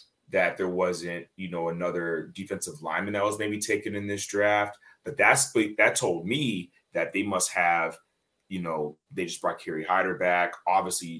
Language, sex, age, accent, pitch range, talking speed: English, male, 30-49, American, 80-115 Hz, 175 wpm